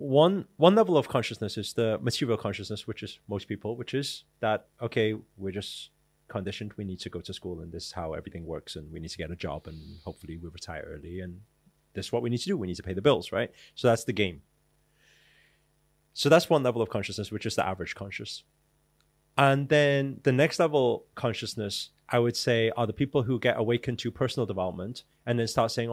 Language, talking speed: English, 220 wpm